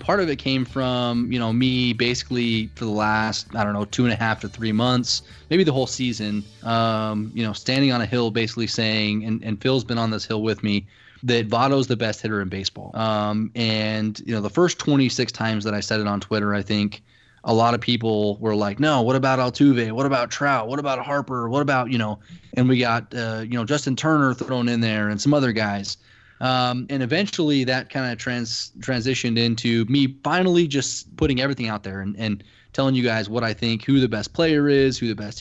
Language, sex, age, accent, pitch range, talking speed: English, male, 20-39, American, 110-130 Hz, 225 wpm